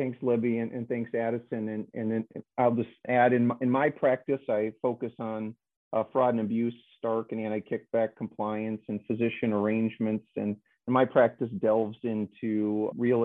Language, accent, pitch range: English, American, 110-125 Hz